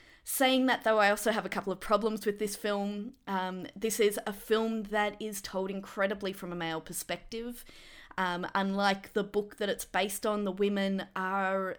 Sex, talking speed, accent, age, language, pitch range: female, 190 wpm, Australian, 20-39, English, 185-215 Hz